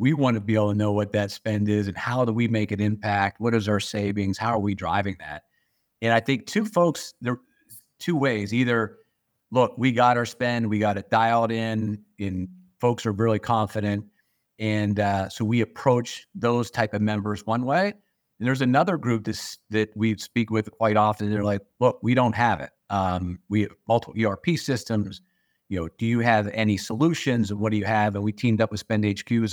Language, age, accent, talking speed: English, 50-69, American, 210 wpm